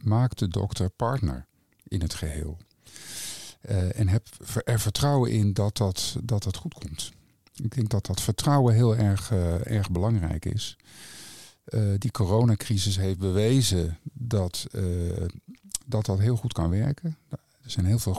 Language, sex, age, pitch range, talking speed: Dutch, male, 50-69, 95-120 Hz, 150 wpm